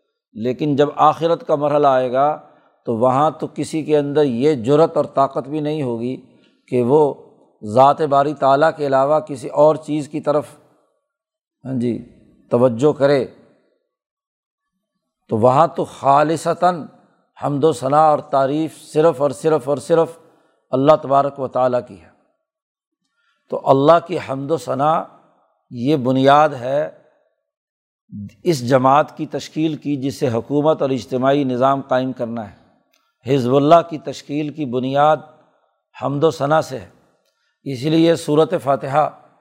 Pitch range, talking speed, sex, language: 135-160 Hz, 140 wpm, male, Urdu